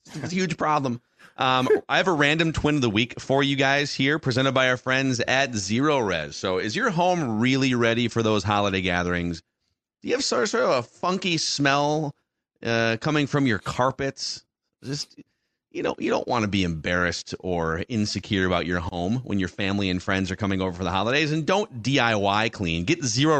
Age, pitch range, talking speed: 30-49, 100-140 Hz, 205 wpm